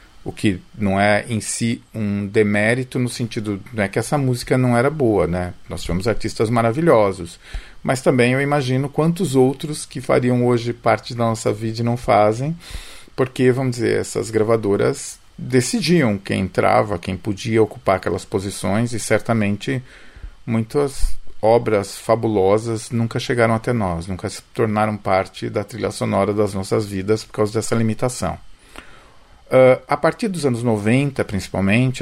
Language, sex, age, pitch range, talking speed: Portuguese, male, 40-59, 105-125 Hz, 155 wpm